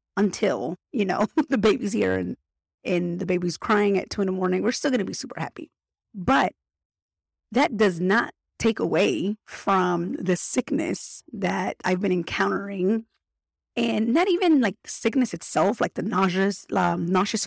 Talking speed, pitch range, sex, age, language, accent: 165 wpm, 180-225 Hz, female, 30-49, English, American